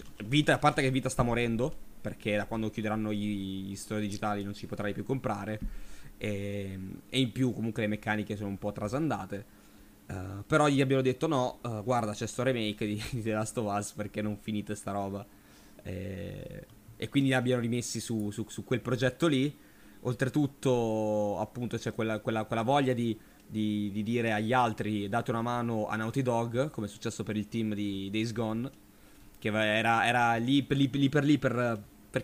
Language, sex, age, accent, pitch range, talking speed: Italian, male, 20-39, native, 105-130 Hz, 190 wpm